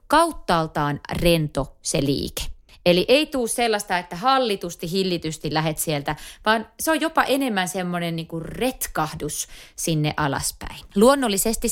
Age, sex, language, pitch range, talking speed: 30-49, female, Finnish, 155-245 Hz, 125 wpm